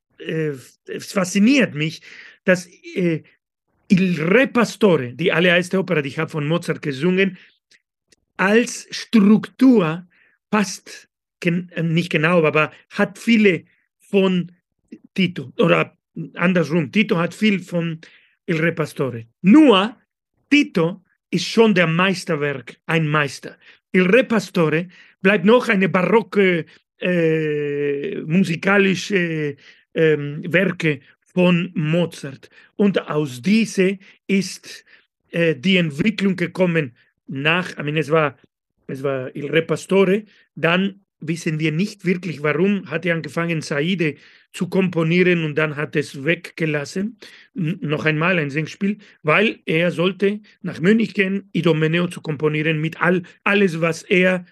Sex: male